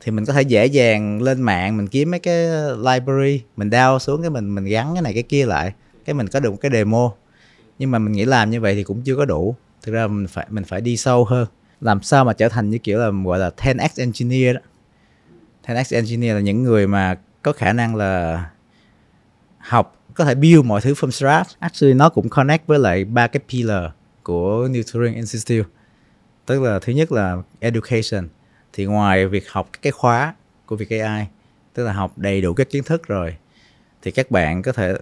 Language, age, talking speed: Vietnamese, 20-39, 215 wpm